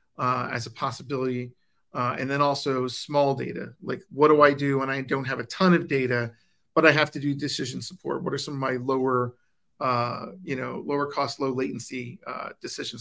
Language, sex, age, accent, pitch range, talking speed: English, male, 40-59, American, 130-155 Hz, 210 wpm